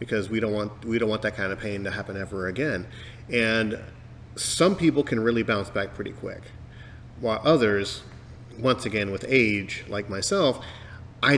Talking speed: 175 wpm